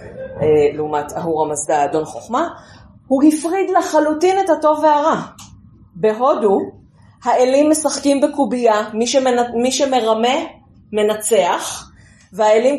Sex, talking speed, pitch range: female, 90 wpm, 170-255 Hz